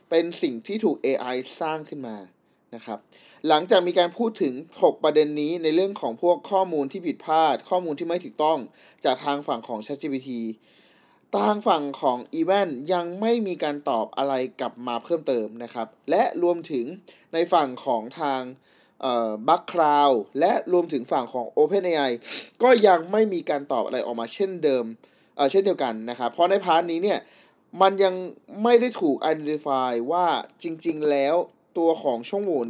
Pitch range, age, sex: 130-180 Hz, 20-39, male